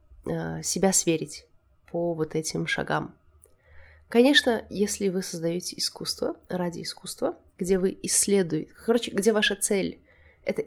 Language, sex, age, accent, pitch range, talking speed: Russian, female, 20-39, native, 165-225 Hz, 120 wpm